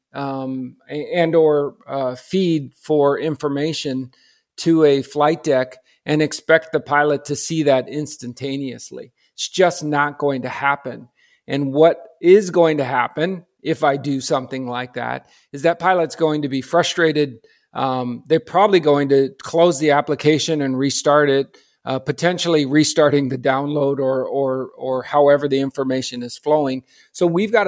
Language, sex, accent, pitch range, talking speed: English, male, American, 135-160 Hz, 155 wpm